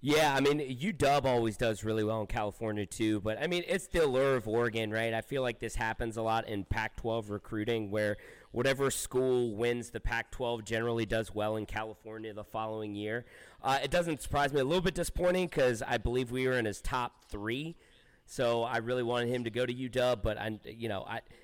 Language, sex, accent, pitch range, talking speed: English, male, American, 110-135 Hz, 215 wpm